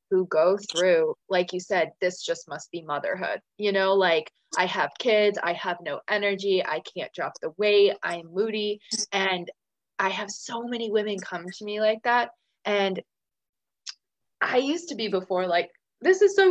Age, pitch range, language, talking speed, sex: 20-39, 180-235 Hz, English, 180 wpm, female